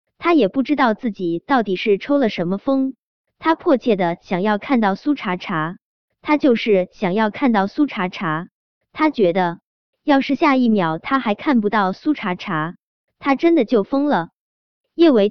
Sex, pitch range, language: male, 190-270 Hz, Chinese